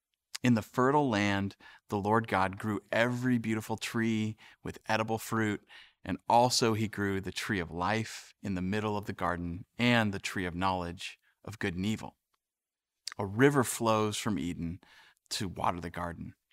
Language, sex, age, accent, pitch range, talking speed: English, male, 30-49, American, 100-125 Hz, 165 wpm